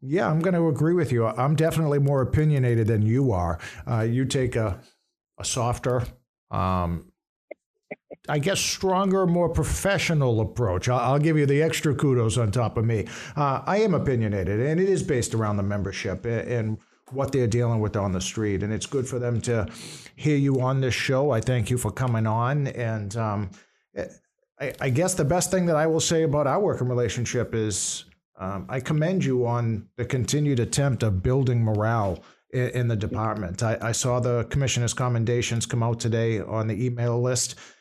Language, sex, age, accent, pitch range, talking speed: English, male, 50-69, American, 105-125 Hz, 190 wpm